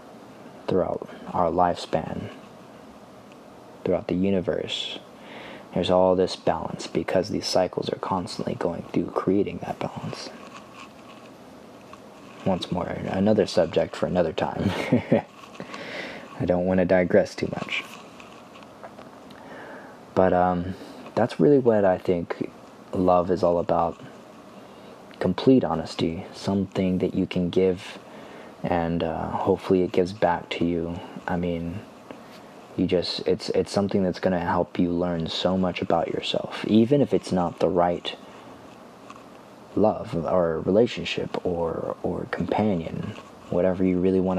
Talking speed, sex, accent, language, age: 125 wpm, male, American, English, 20-39